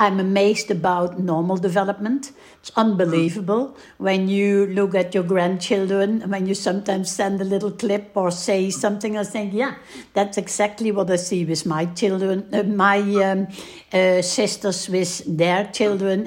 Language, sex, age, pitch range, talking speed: English, female, 60-79, 180-210 Hz, 155 wpm